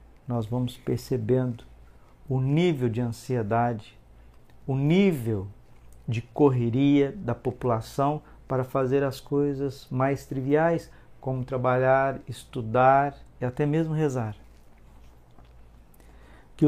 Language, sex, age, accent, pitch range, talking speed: Portuguese, male, 50-69, Brazilian, 120-145 Hz, 95 wpm